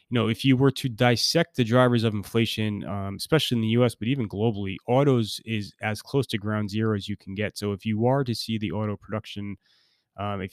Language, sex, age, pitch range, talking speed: English, male, 20-39, 100-120 Hz, 230 wpm